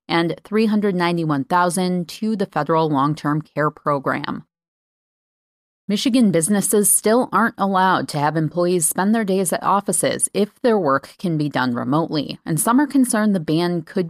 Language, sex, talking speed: English, female, 150 wpm